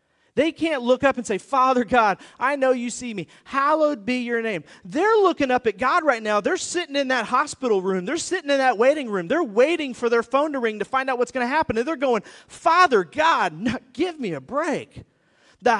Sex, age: male, 30-49